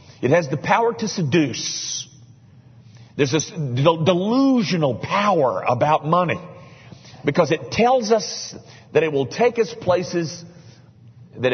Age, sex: 50-69, male